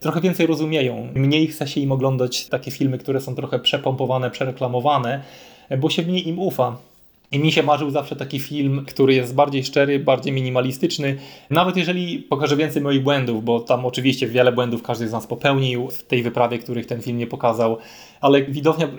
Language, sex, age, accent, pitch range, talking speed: Polish, male, 20-39, native, 125-145 Hz, 185 wpm